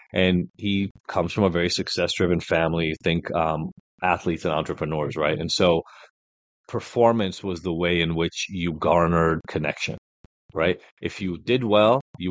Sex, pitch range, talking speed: male, 85-105 Hz, 150 wpm